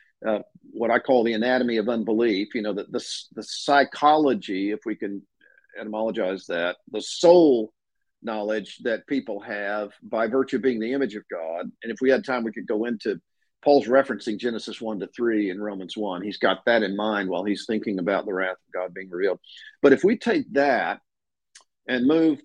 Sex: male